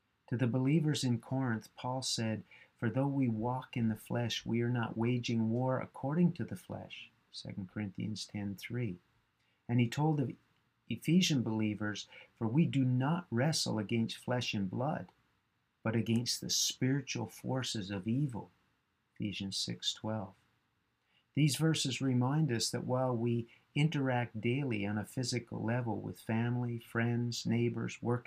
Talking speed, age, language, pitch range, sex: 145 wpm, 50-69, English, 110-135 Hz, male